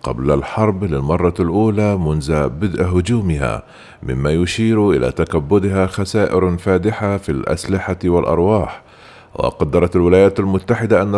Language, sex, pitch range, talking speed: Arabic, male, 85-105 Hz, 105 wpm